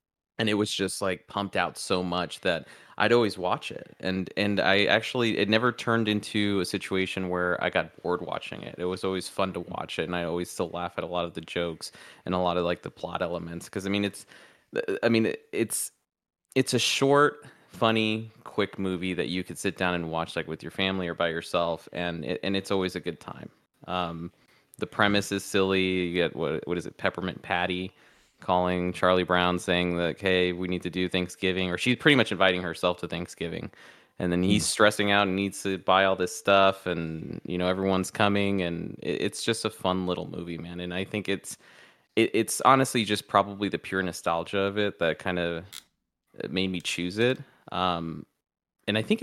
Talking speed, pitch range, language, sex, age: 210 wpm, 90-100 Hz, English, male, 20-39